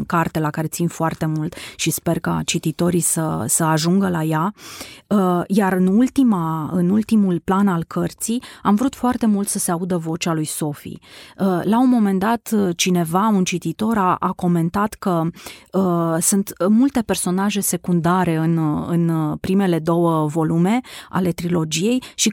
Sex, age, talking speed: female, 30-49, 150 wpm